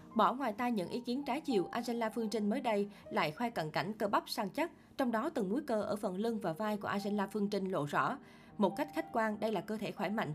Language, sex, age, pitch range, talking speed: Vietnamese, female, 20-39, 195-235 Hz, 275 wpm